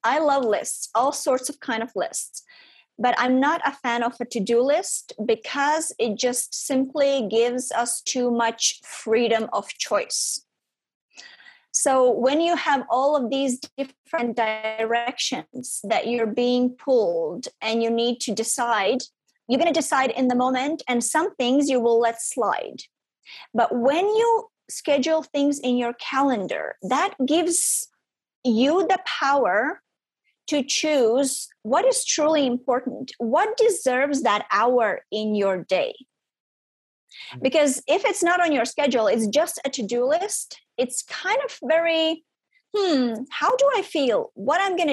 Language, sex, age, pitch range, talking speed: English, female, 30-49, 240-320 Hz, 150 wpm